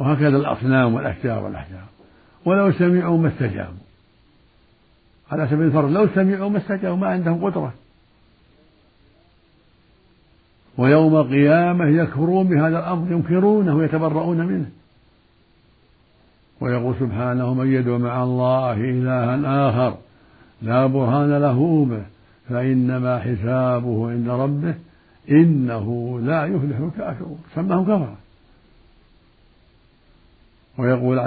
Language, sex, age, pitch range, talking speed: Arabic, male, 60-79, 120-155 Hz, 95 wpm